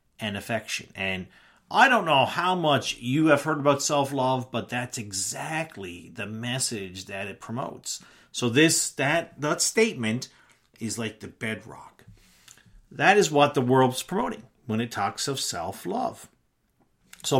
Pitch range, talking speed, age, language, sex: 115-160 Hz, 140 wpm, 40-59, English, male